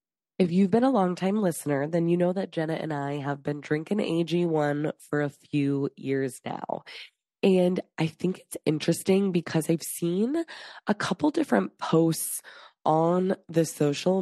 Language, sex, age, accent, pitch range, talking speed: English, female, 20-39, American, 155-195 Hz, 155 wpm